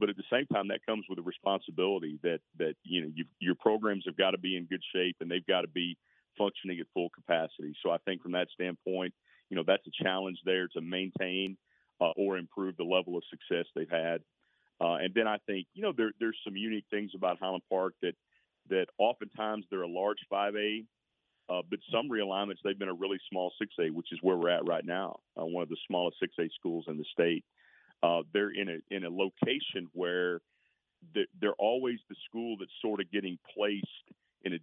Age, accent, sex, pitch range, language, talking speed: 40-59, American, male, 85-100 Hz, English, 215 wpm